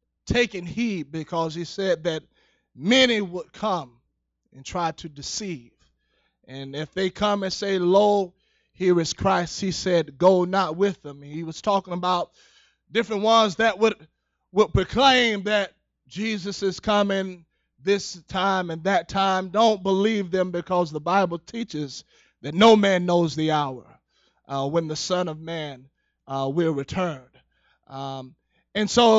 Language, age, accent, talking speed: English, 20-39, American, 150 wpm